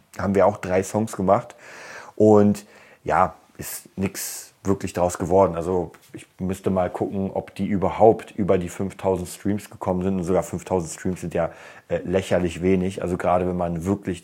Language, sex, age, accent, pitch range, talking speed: German, male, 30-49, German, 90-105 Hz, 175 wpm